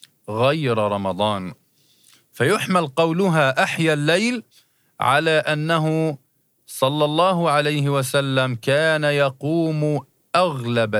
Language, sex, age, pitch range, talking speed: Arabic, male, 40-59, 130-165 Hz, 80 wpm